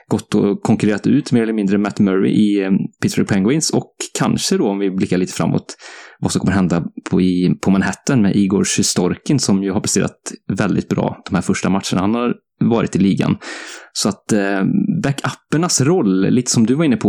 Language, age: English, 20-39